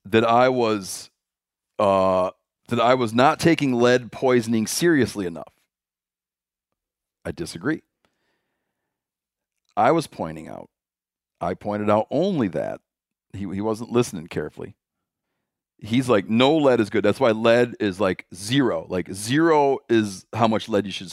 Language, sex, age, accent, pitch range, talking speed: English, male, 40-59, American, 95-120 Hz, 140 wpm